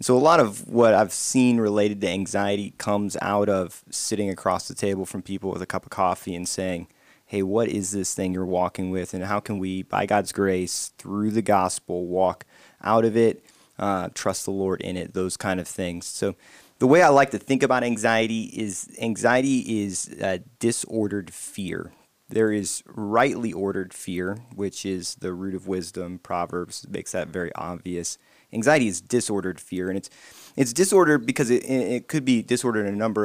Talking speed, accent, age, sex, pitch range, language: 190 wpm, American, 20-39, male, 95-115 Hz, English